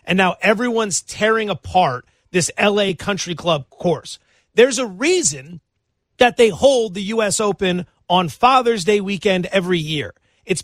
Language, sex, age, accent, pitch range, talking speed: English, male, 30-49, American, 165-230 Hz, 145 wpm